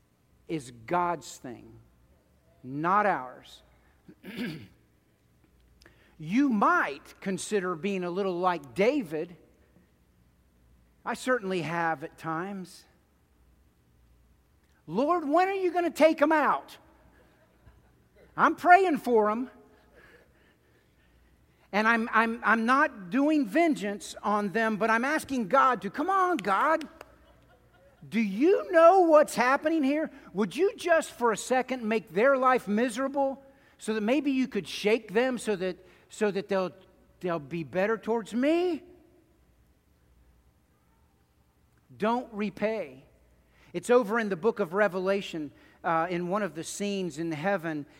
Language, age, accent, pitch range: English, 50-69, American, 155-245 Hz